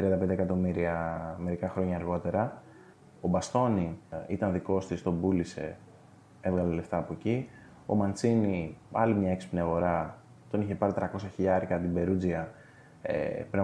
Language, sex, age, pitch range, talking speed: Greek, male, 20-39, 90-110 Hz, 130 wpm